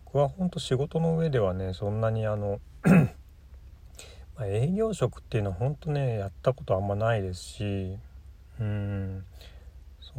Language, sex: Japanese, male